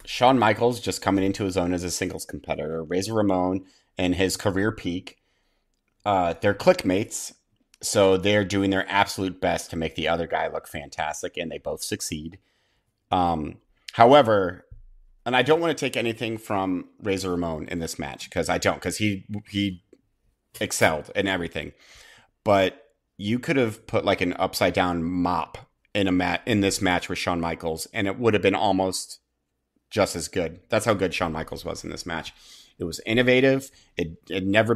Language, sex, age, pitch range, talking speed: English, male, 30-49, 90-110 Hz, 180 wpm